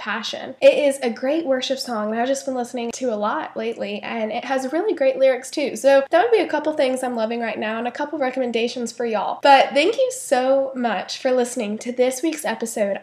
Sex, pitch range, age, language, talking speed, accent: female, 235-285 Hz, 10-29, English, 235 wpm, American